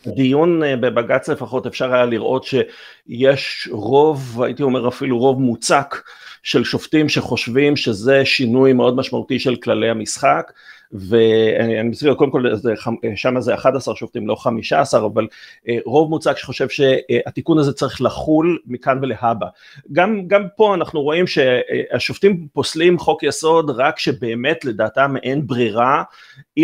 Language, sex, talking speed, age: Hebrew, male, 130 wpm, 40-59